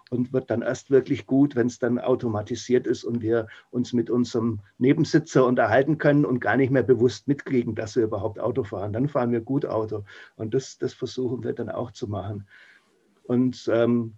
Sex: male